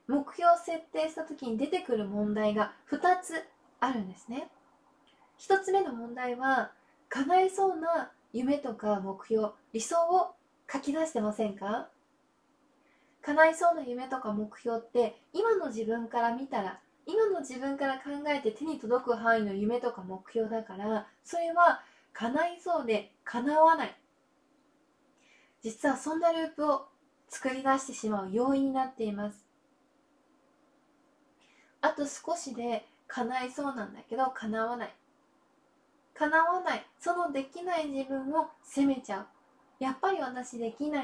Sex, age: female, 20-39